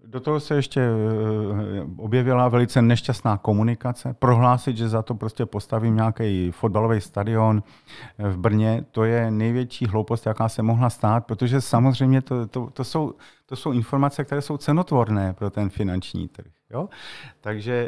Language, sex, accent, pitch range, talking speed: Czech, male, native, 105-125 Hz, 140 wpm